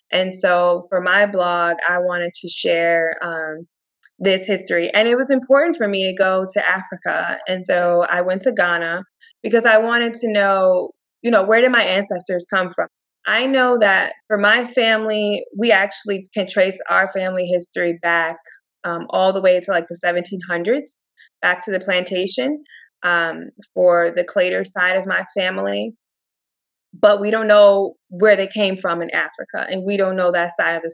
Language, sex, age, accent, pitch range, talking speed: English, female, 20-39, American, 170-200 Hz, 180 wpm